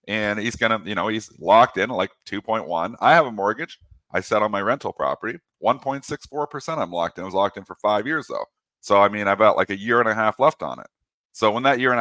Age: 40-59